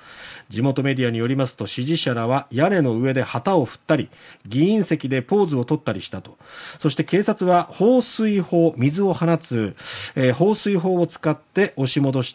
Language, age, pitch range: Japanese, 40-59, 125-165 Hz